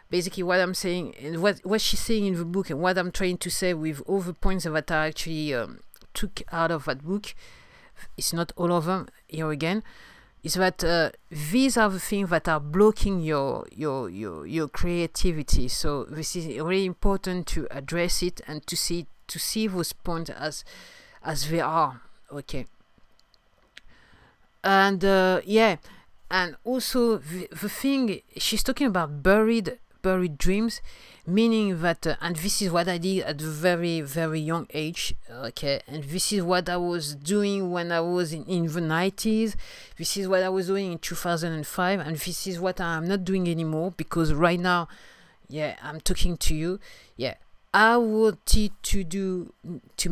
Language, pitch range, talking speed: English, 160-195 Hz, 175 wpm